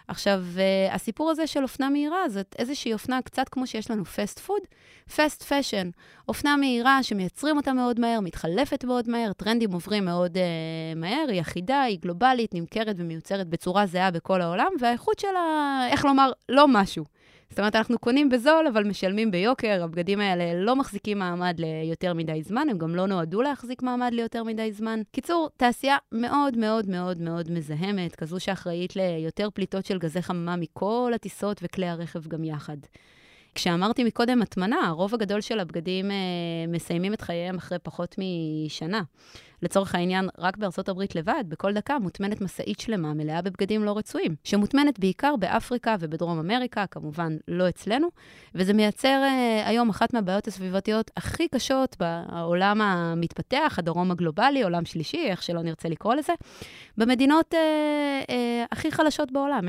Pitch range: 175-250 Hz